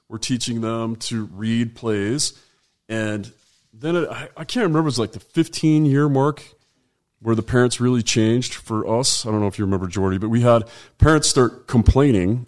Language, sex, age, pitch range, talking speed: English, male, 30-49, 100-120 Hz, 185 wpm